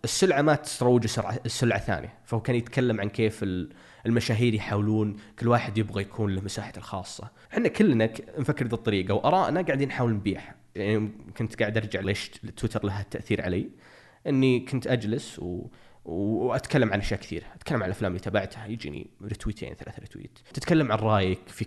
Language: Arabic